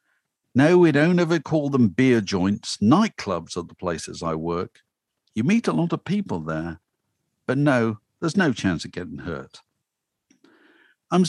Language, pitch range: English, 100-150 Hz